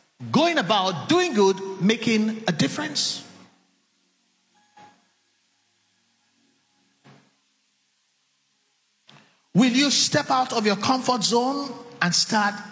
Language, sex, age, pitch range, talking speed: English, male, 50-69, 160-245 Hz, 80 wpm